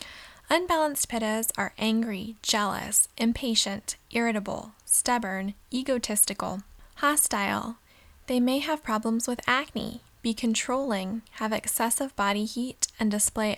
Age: 10-29